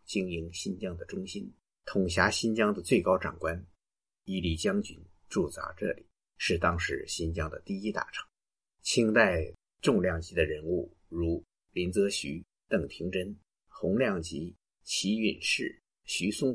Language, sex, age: Chinese, male, 50-69